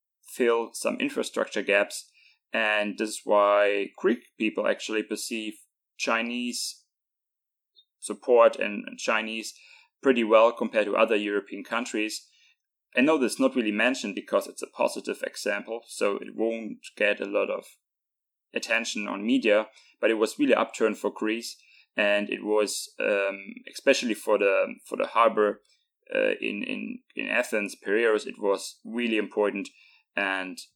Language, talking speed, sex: English, 140 wpm, male